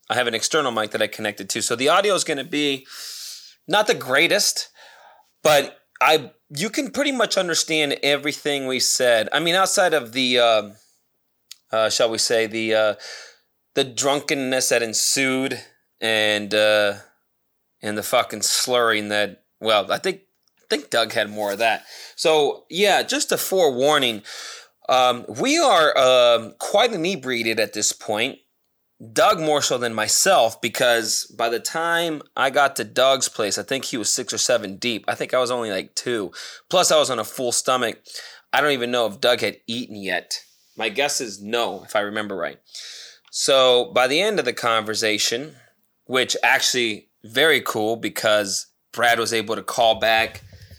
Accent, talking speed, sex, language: American, 175 wpm, male, English